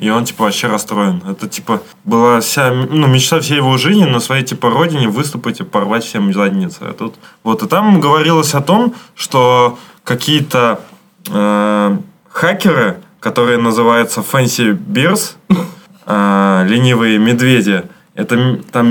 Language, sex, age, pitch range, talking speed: Russian, male, 20-39, 115-145 Hz, 140 wpm